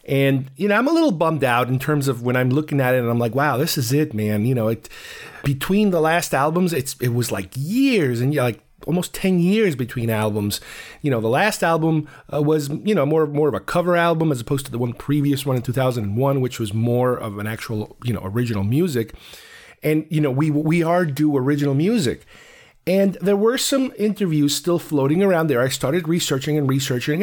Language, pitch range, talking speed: English, 120-160 Hz, 225 wpm